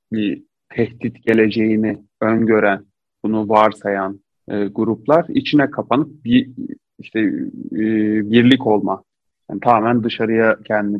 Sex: male